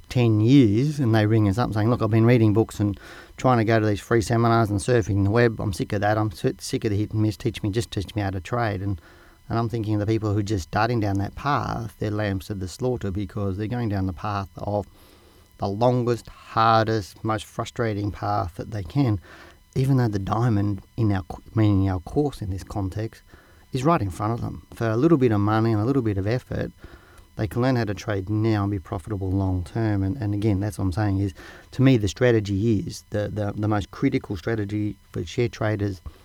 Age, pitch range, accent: 40-59, 100-115 Hz, Australian